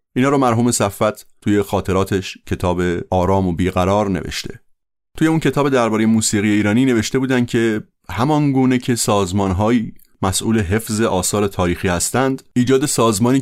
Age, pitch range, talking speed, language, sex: 30-49, 95-120 Hz, 135 wpm, Persian, male